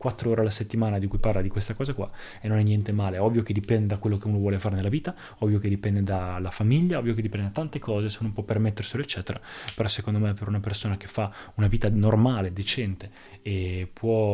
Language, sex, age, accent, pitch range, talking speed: Italian, male, 20-39, native, 100-115 Hz, 240 wpm